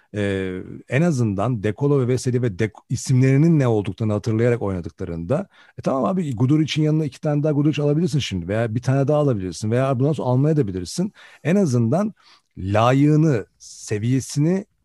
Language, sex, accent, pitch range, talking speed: Turkish, male, native, 95-130 Hz, 150 wpm